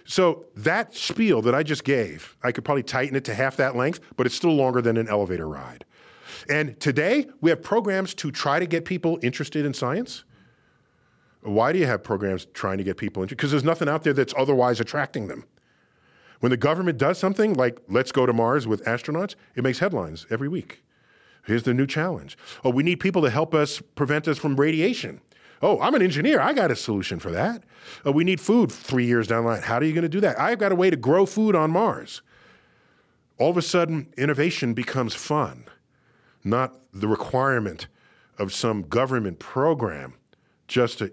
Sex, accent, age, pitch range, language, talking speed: male, American, 40-59, 115-160 Hz, English, 205 wpm